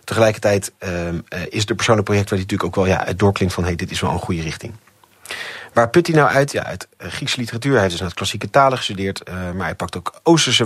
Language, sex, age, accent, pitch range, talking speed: Dutch, male, 30-49, Dutch, 95-120 Hz, 260 wpm